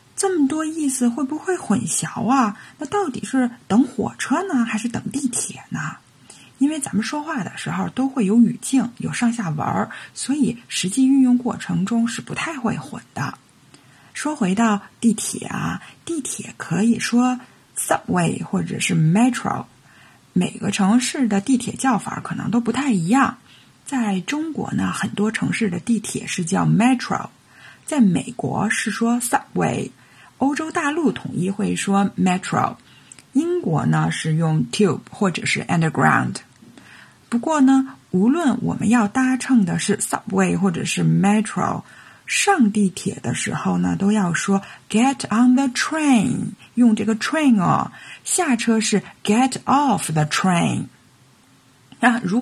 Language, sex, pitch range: Chinese, female, 200-265 Hz